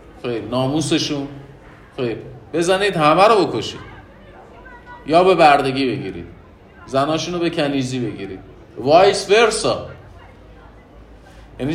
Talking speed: 95 wpm